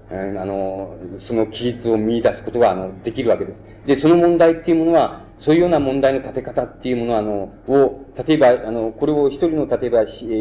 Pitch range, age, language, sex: 105-135 Hz, 40-59, Japanese, male